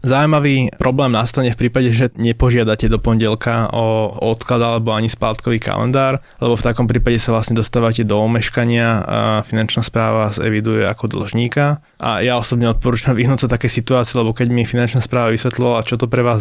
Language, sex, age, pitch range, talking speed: Slovak, male, 20-39, 110-125 Hz, 180 wpm